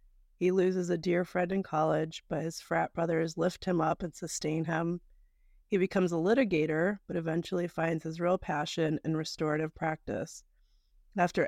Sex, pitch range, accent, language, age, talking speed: female, 160-180 Hz, American, English, 30-49, 160 wpm